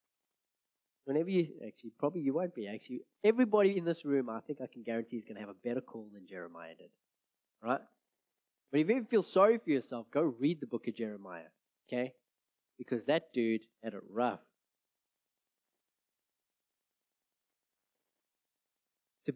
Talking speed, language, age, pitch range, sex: 160 wpm, English, 30-49, 120-155 Hz, male